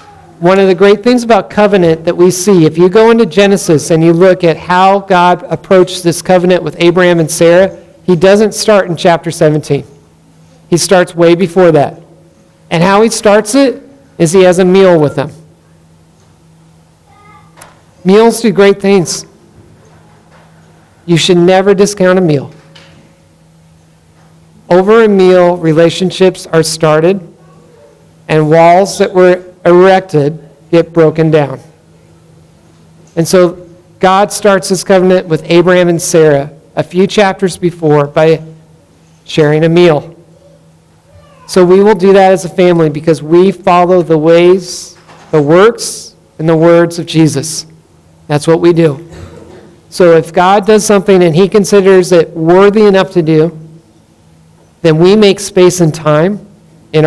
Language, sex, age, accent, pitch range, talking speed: English, male, 50-69, American, 155-190 Hz, 145 wpm